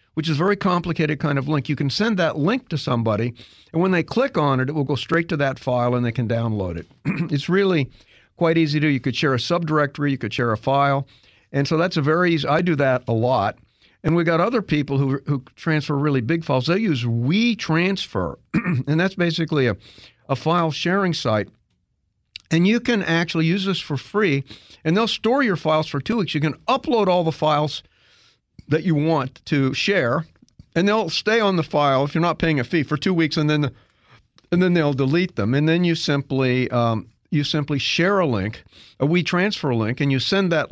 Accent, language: American, English